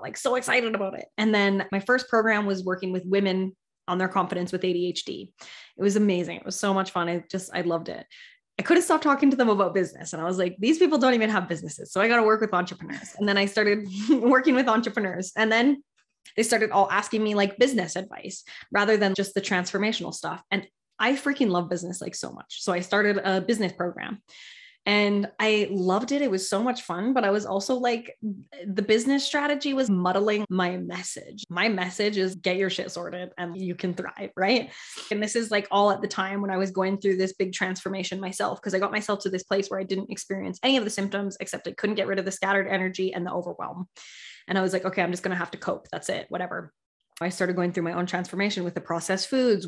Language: English